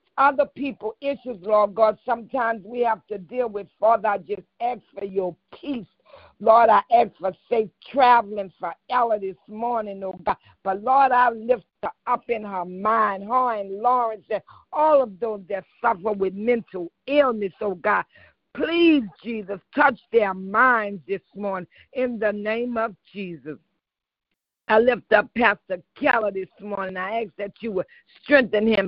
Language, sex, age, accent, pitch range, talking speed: English, female, 60-79, American, 195-240 Hz, 165 wpm